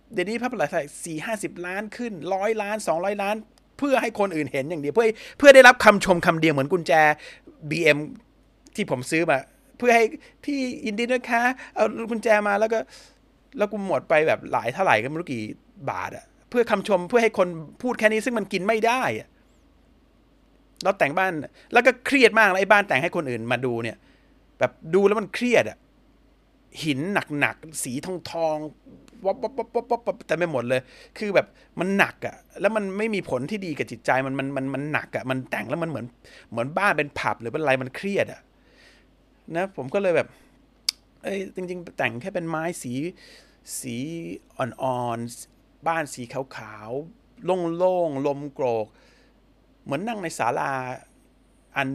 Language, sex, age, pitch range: Thai, male, 30-49, 140-220 Hz